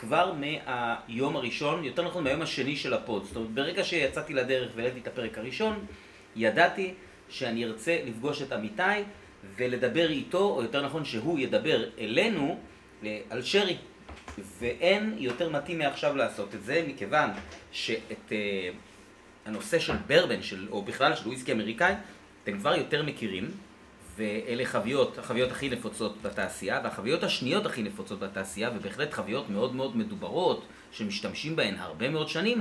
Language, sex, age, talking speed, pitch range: Hebrew, male, 30-49, 140 wpm, 115-175 Hz